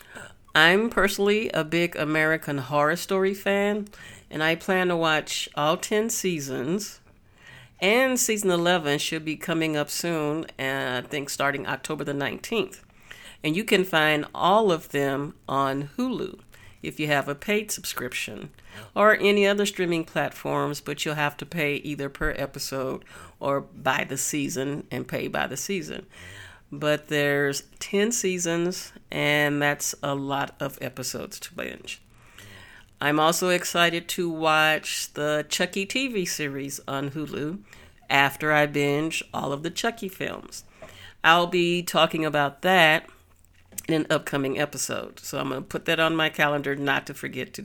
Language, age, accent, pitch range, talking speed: English, 50-69, American, 140-175 Hz, 150 wpm